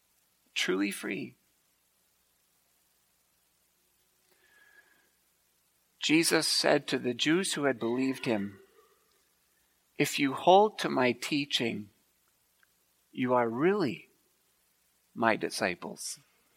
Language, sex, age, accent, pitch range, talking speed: English, male, 50-69, American, 170-270 Hz, 80 wpm